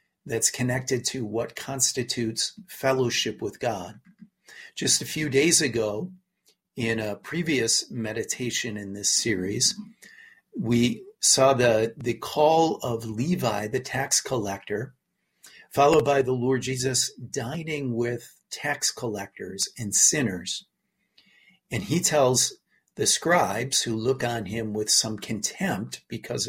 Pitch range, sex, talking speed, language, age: 115-170 Hz, male, 120 wpm, English, 50-69